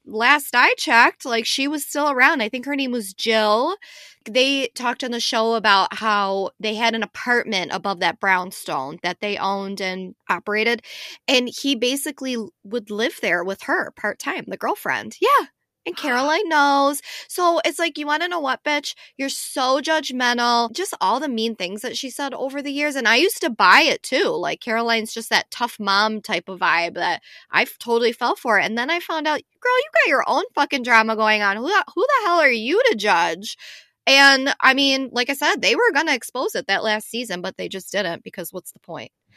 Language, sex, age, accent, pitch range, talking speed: English, female, 20-39, American, 210-280 Hz, 210 wpm